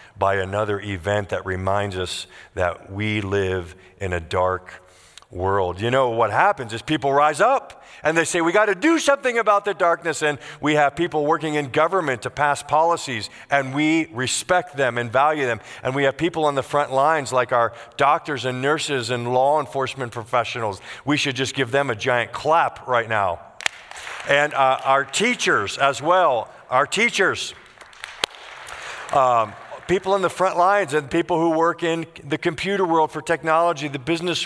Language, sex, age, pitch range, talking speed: English, male, 50-69, 115-160 Hz, 175 wpm